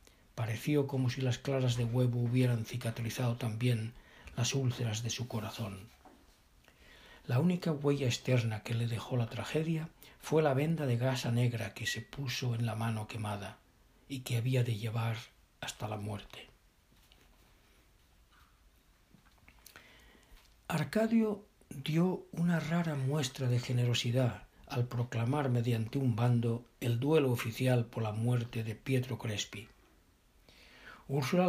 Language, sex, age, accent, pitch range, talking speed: English, male, 60-79, Spanish, 115-135 Hz, 130 wpm